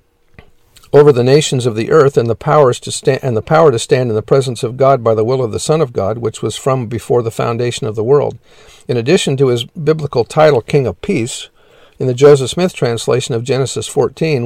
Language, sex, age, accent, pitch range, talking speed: English, male, 50-69, American, 120-145 Hz, 230 wpm